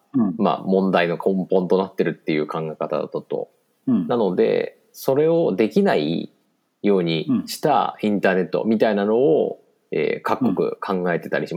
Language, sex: Japanese, male